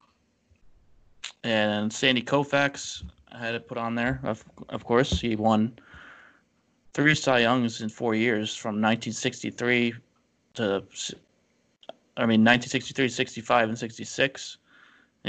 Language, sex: English, male